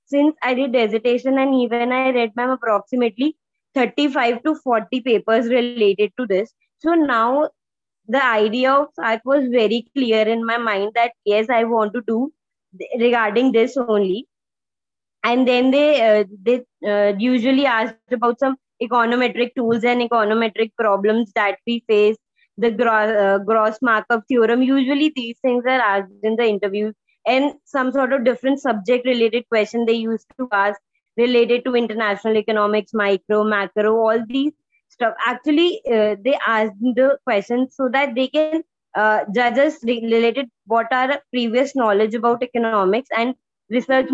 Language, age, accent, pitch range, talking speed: Hindi, 20-39, native, 220-260 Hz, 150 wpm